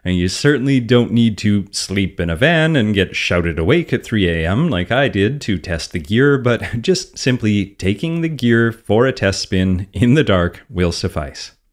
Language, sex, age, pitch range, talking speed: English, male, 30-49, 90-115 Hz, 195 wpm